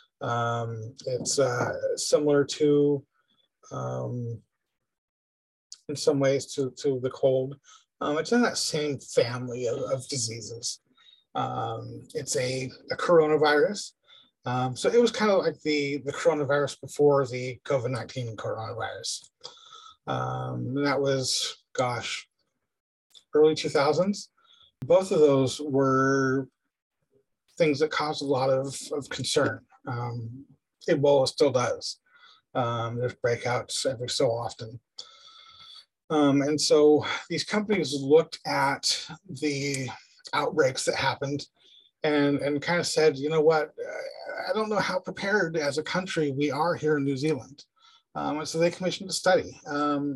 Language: English